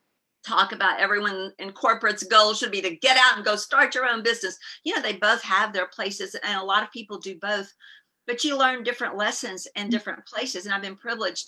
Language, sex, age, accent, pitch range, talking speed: English, female, 50-69, American, 195-235 Hz, 225 wpm